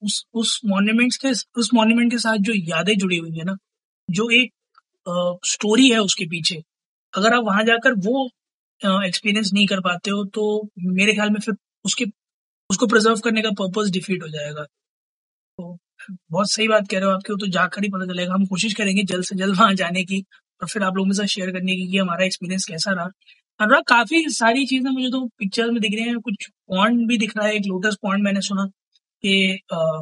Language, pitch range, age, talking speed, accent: Hindi, 185-215 Hz, 20-39, 205 wpm, native